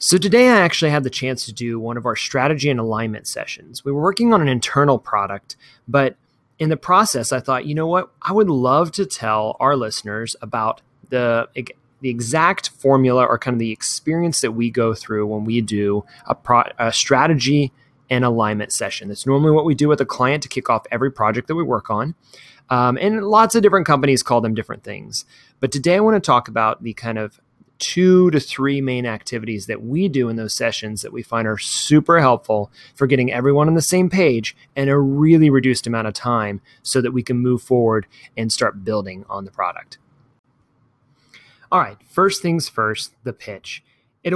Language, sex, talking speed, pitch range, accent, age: English, male, 205 wpm, 115-155 Hz, American, 30-49